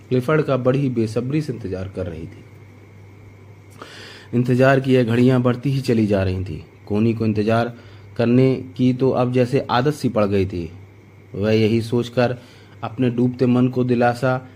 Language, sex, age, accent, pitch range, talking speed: Hindi, male, 30-49, native, 100-120 Hz, 165 wpm